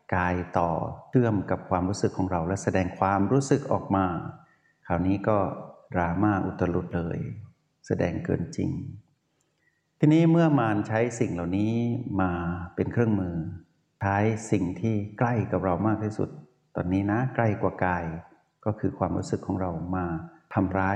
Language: Thai